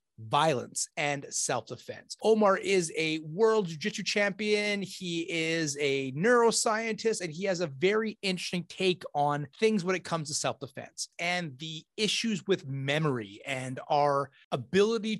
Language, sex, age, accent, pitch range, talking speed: English, male, 30-49, American, 150-200 Hz, 140 wpm